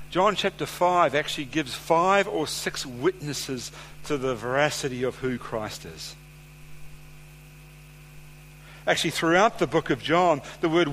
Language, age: English, 60-79